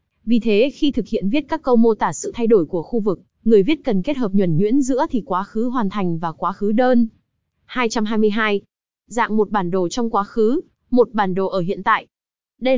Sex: female